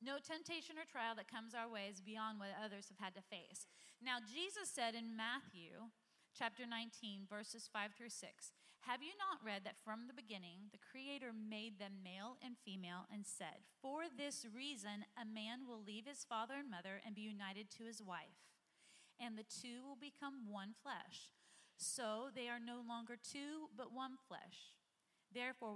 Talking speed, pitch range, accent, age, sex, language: 180 wpm, 200-250 Hz, American, 30-49, female, English